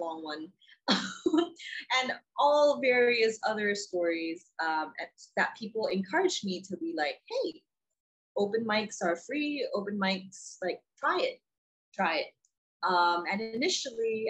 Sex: female